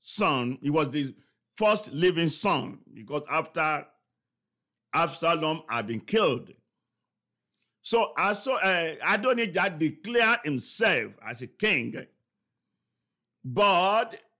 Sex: male